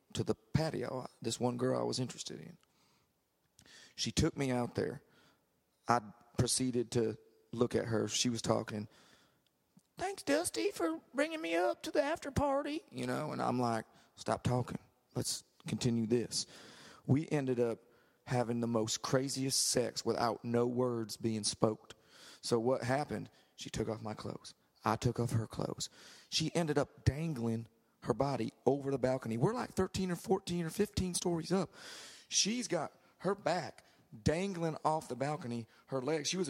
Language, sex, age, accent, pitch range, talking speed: English, male, 40-59, American, 120-165 Hz, 165 wpm